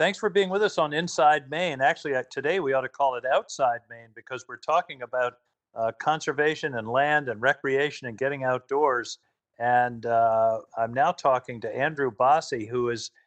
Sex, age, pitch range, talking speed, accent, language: male, 50-69, 115-145 Hz, 185 wpm, American, English